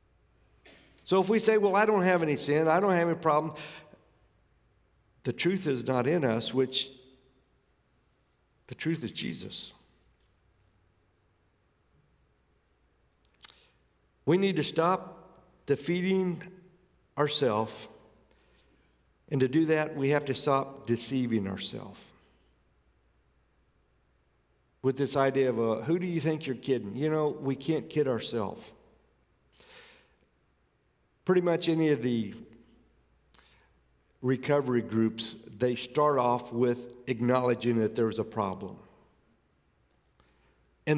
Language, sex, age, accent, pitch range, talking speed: English, male, 60-79, American, 95-145 Hz, 115 wpm